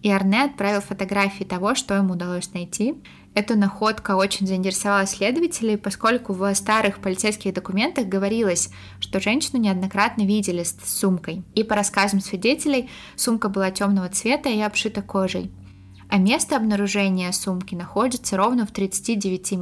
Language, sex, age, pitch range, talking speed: Russian, female, 20-39, 185-215 Hz, 140 wpm